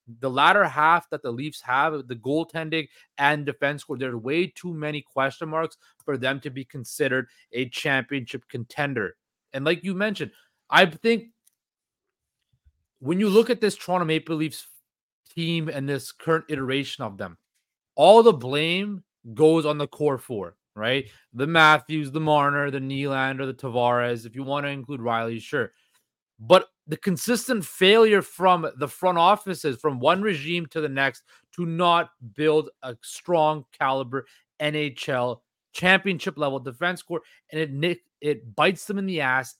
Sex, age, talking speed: male, 30-49, 155 wpm